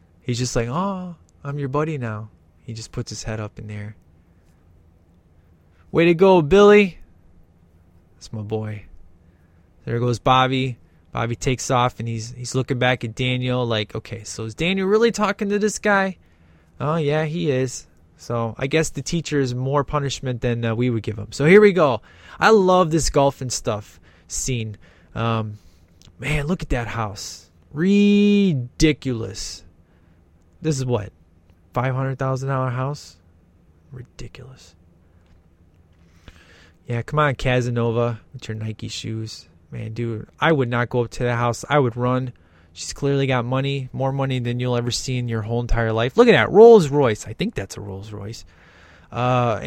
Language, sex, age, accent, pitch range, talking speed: English, male, 20-39, American, 90-140 Hz, 165 wpm